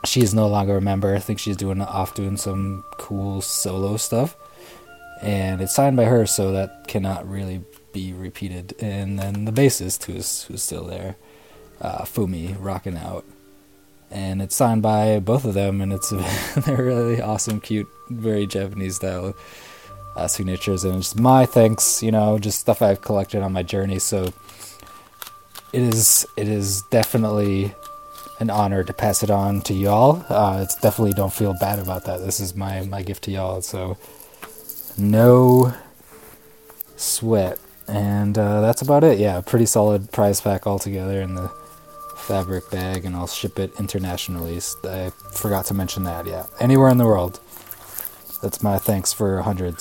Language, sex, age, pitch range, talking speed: English, male, 20-39, 95-115 Hz, 165 wpm